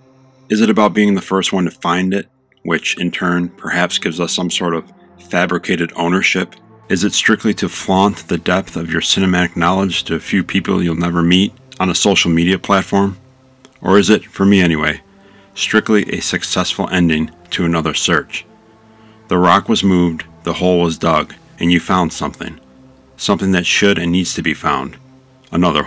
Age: 40-59